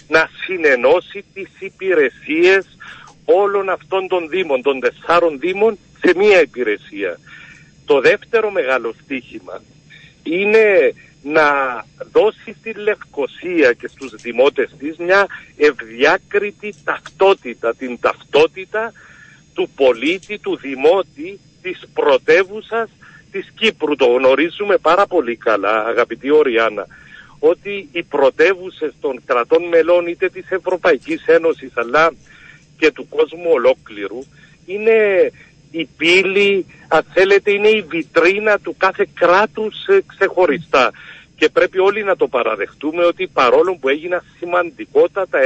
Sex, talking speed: male, 110 wpm